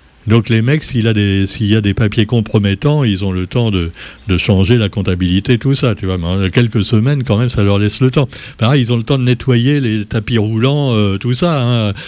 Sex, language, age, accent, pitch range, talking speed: male, French, 60-79, French, 105-135 Hz, 245 wpm